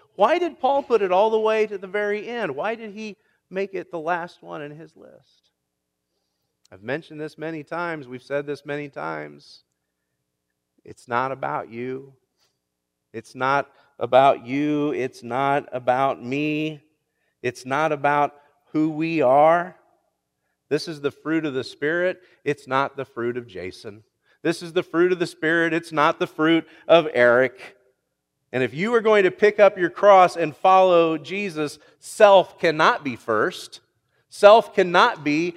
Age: 40-59